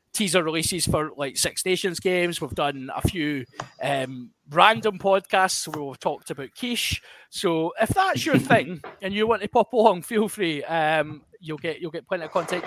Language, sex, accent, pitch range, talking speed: English, male, British, 150-210 Hz, 190 wpm